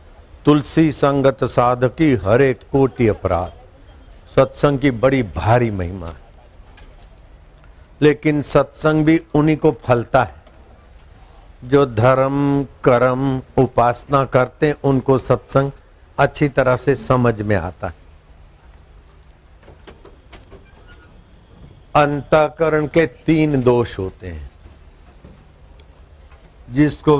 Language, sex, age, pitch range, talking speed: Hindi, male, 60-79, 85-135 Hz, 90 wpm